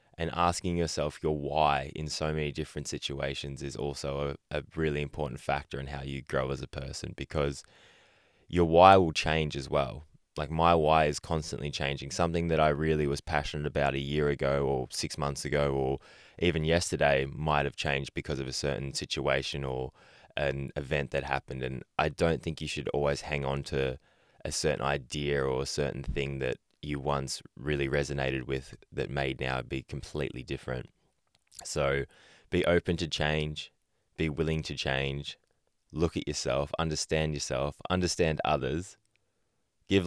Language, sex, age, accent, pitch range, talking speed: English, male, 10-29, Australian, 70-85 Hz, 170 wpm